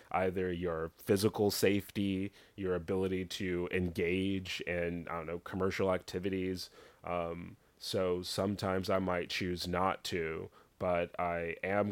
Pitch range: 90-100 Hz